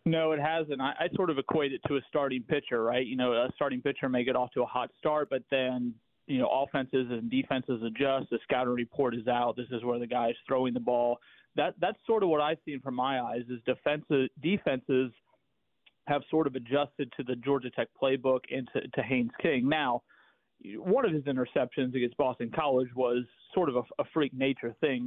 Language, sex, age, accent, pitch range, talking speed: English, male, 30-49, American, 125-150 Hz, 215 wpm